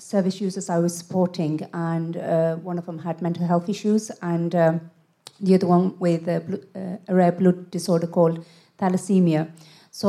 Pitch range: 170-190 Hz